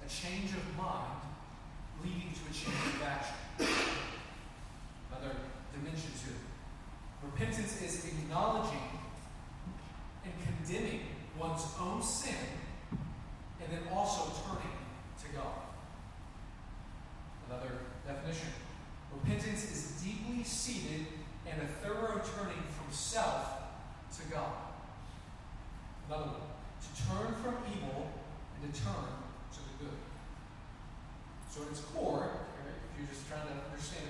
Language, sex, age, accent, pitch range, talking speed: English, male, 40-59, American, 130-170 Hz, 105 wpm